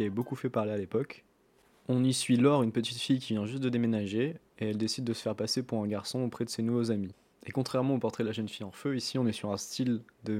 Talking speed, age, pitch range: 290 wpm, 20-39, 105-125 Hz